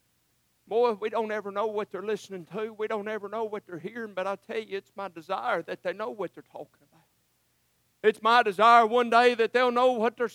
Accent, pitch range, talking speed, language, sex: American, 180-260 Hz, 230 wpm, English, male